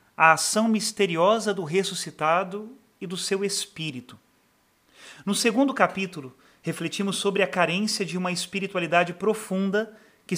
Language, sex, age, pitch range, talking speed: Portuguese, male, 40-59, 170-210 Hz, 120 wpm